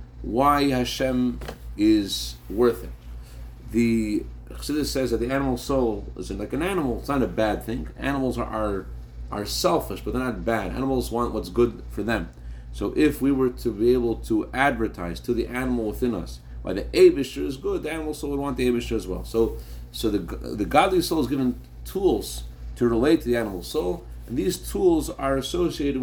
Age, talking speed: 40-59, 195 wpm